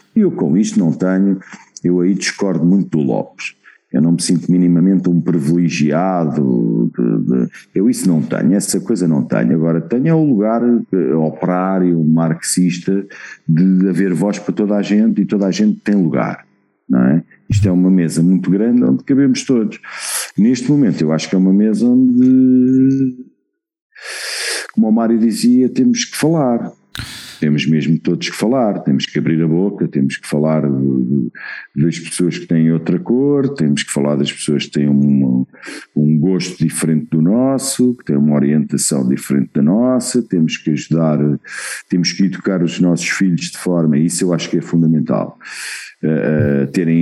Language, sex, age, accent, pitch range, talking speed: Portuguese, male, 50-69, Portuguese, 80-115 Hz, 170 wpm